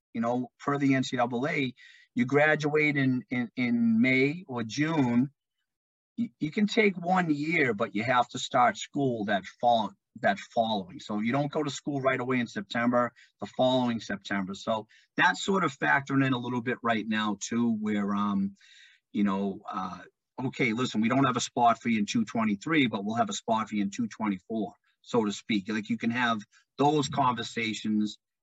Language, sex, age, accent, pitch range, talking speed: English, male, 50-69, American, 110-150 Hz, 185 wpm